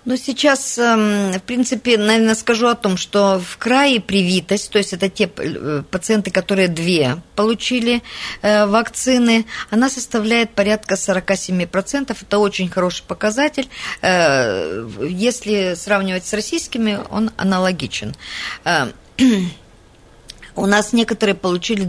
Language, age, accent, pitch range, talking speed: Russian, 50-69, native, 175-225 Hz, 105 wpm